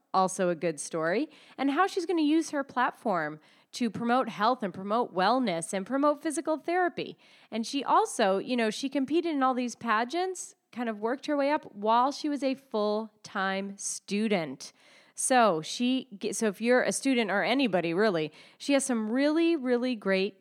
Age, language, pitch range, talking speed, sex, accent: 30-49, English, 195-270 Hz, 180 wpm, female, American